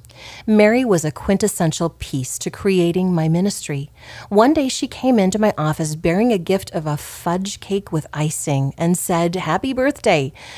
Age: 40-59